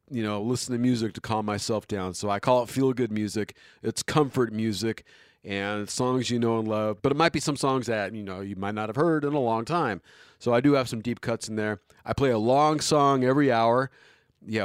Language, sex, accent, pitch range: English, male, American, 100-125 Hz